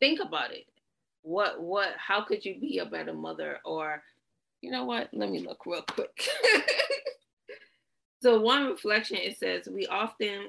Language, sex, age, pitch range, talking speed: English, female, 30-49, 165-220 Hz, 160 wpm